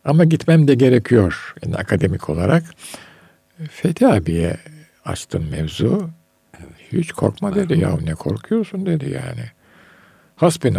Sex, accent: male, native